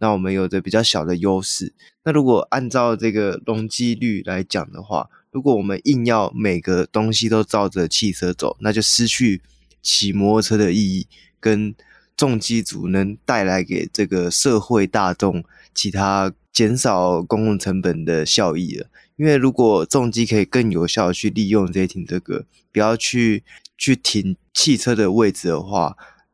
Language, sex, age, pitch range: Chinese, male, 20-39, 100-120 Hz